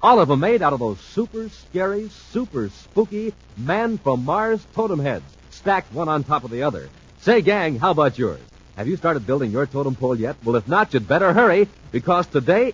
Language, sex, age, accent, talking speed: English, male, 60-79, American, 200 wpm